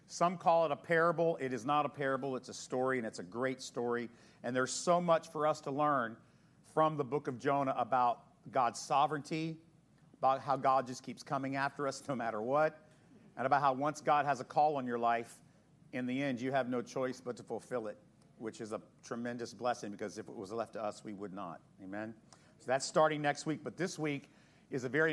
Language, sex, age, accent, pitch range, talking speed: English, male, 50-69, American, 130-165 Hz, 225 wpm